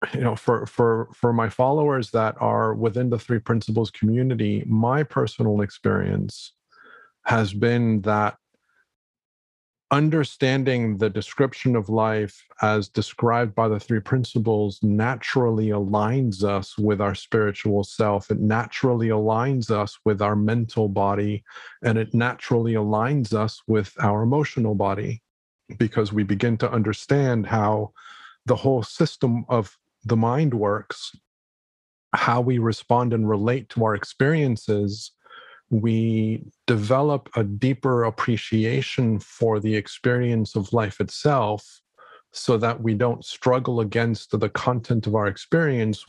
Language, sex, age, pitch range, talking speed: English, male, 40-59, 105-120 Hz, 130 wpm